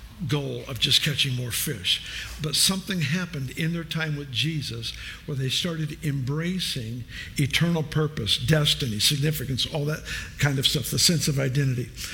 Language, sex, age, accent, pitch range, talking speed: English, male, 50-69, American, 140-170 Hz, 155 wpm